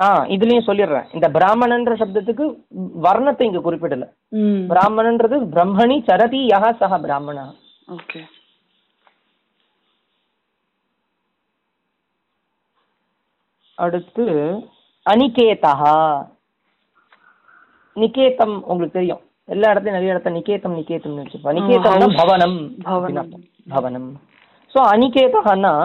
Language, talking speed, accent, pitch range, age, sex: Tamil, 30 wpm, native, 175-235 Hz, 30-49, female